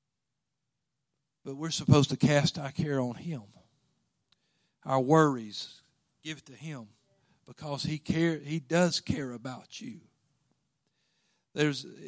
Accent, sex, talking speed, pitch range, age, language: American, male, 120 wpm, 130-155 Hz, 50-69, English